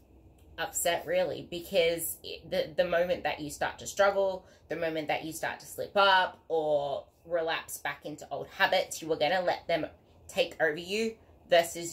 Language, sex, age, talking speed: English, female, 20-39, 175 wpm